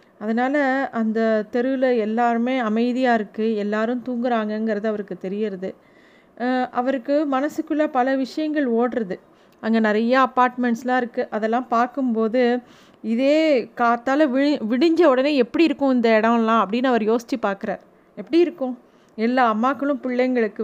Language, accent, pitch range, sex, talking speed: Tamil, native, 220-255 Hz, female, 115 wpm